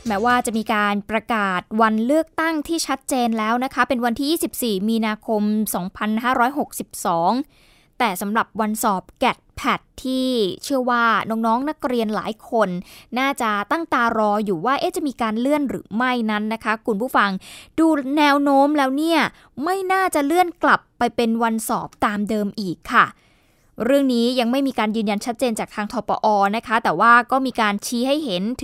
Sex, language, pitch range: female, Thai, 215-270 Hz